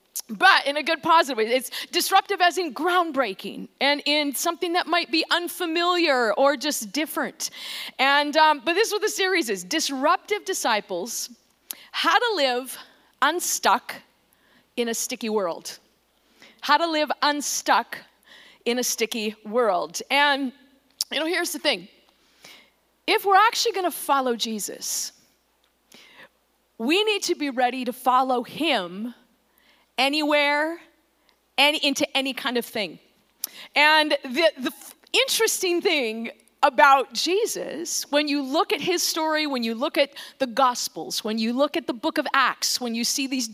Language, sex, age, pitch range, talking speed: English, female, 40-59, 255-340 Hz, 150 wpm